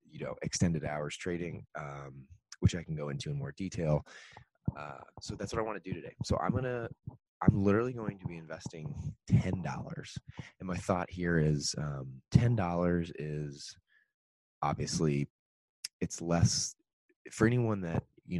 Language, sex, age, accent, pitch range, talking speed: English, male, 20-39, American, 75-95 Hz, 160 wpm